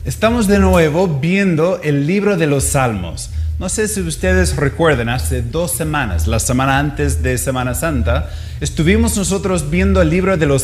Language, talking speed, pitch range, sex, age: Spanish, 170 wpm, 120-185 Hz, male, 30-49